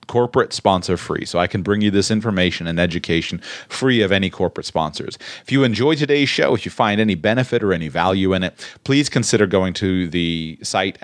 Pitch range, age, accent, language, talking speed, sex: 90-110 Hz, 30-49, American, English, 205 wpm, male